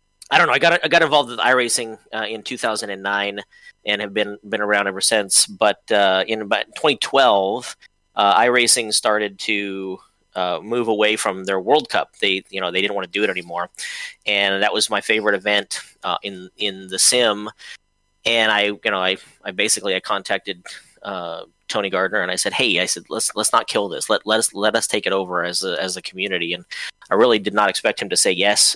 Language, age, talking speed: English, 30-49, 215 wpm